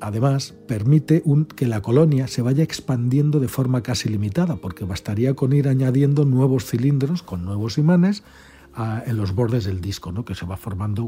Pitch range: 100-130 Hz